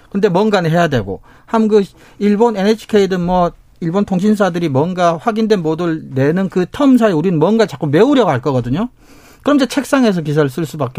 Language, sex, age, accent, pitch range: Korean, male, 40-59, native, 130-200 Hz